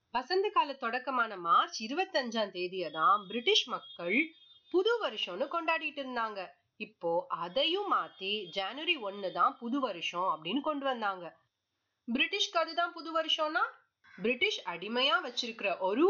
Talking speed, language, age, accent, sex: 100 wpm, Tamil, 30-49, native, female